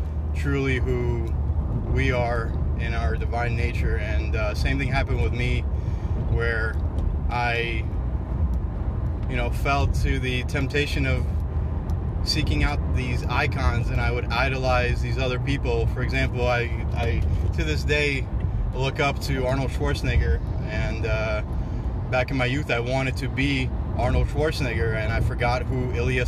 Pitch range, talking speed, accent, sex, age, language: 75-115 Hz, 145 wpm, American, male, 30-49, English